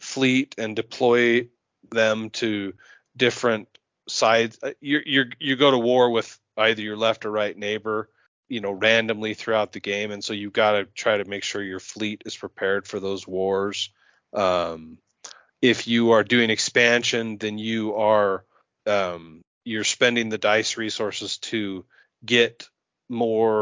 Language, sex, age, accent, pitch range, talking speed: English, male, 30-49, American, 105-120 Hz, 150 wpm